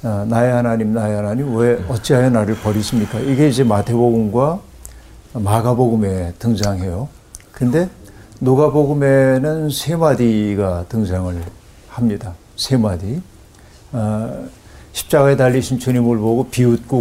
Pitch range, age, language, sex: 105-125 Hz, 50-69, Korean, male